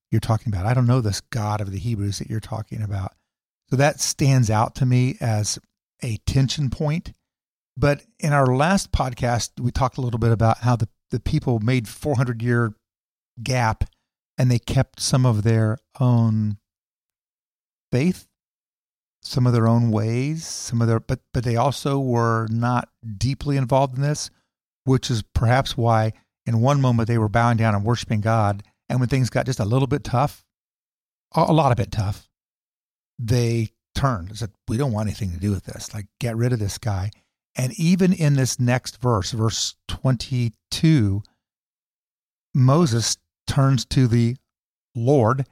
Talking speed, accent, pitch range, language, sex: 170 wpm, American, 110-130 Hz, English, male